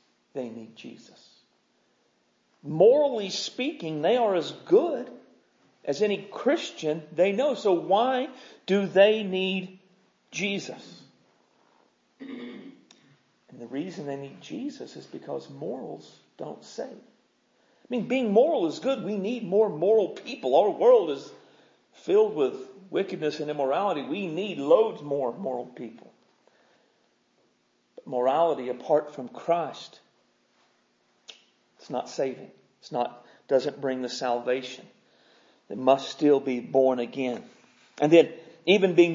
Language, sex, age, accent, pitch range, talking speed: English, male, 50-69, American, 145-215 Hz, 120 wpm